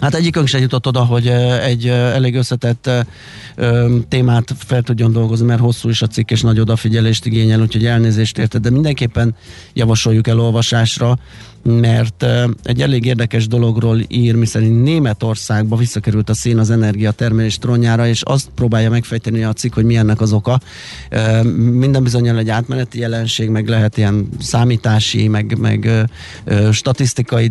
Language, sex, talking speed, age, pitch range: Hungarian, male, 145 wpm, 30-49, 110-120 Hz